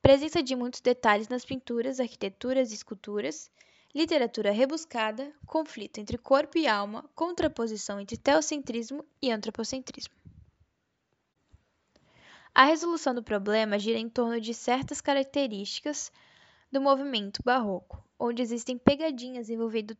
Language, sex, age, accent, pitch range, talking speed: Portuguese, female, 10-29, Brazilian, 225-275 Hz, 115 wpm